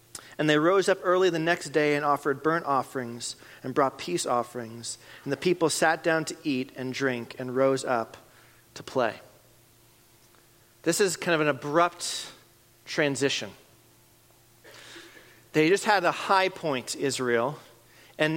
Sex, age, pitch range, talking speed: male, 40-59, 115-165 Hz, 145 wpm